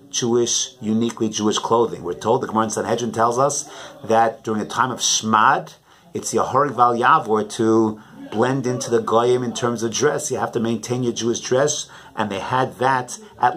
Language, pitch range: English, 110-130 Hz